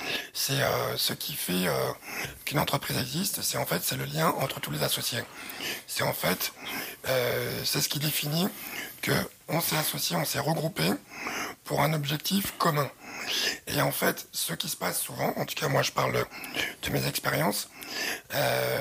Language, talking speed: French, 180 wpm